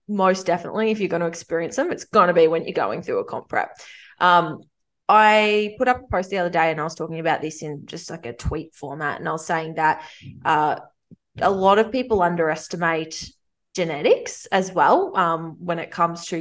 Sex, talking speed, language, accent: female, 215 wpm, English, Australian